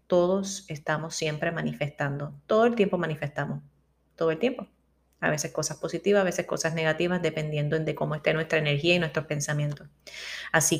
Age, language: 30-49, Spanish